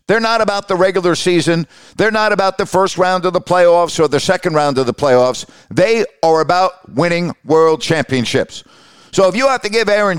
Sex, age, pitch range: male, 50-69, 155-185 Hz